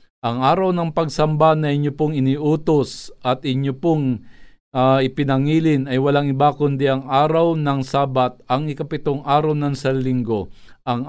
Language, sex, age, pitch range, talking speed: Filipino, male, 50-69, 130-155 Hz, 145 wpm